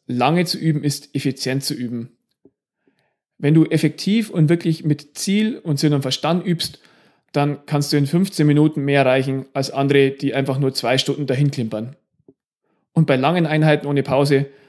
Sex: male